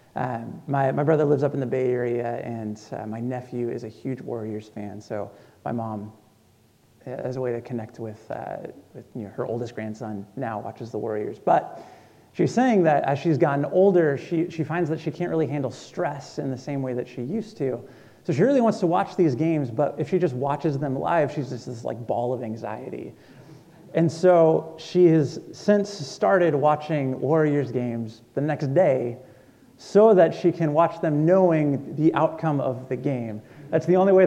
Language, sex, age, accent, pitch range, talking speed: English, male, 30-49, American, 125-165 Hz, 200 wpm